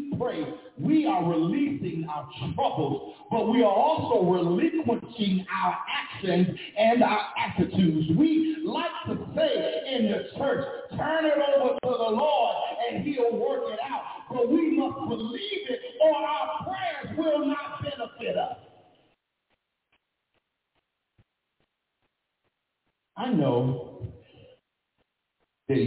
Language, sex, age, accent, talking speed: English, male, 50-69, American, 110 wpm